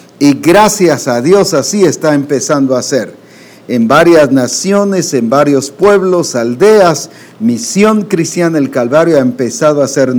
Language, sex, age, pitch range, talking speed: English, male, 50-69, 135-185 Hz, 140 wpm